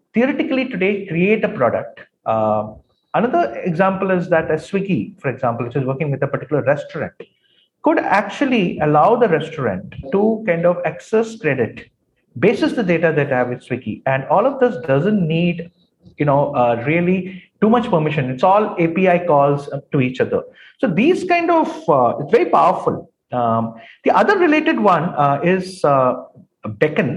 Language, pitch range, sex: English, 145-215 Hz, male